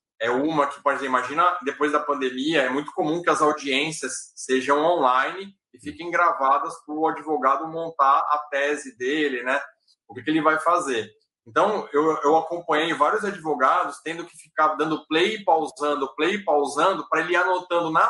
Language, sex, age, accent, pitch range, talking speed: Portuguese, male, 20-39, Brazilian, 155-205 Hz, 170 wpm